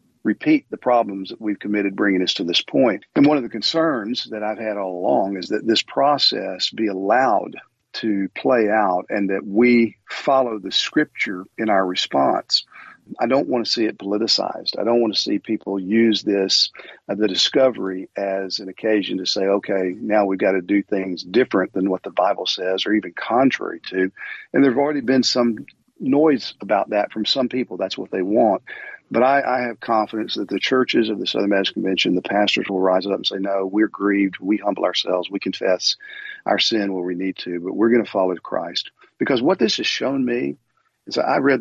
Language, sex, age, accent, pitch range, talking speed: English, male, 50-69, American, 95-115 Hz, 205 wpm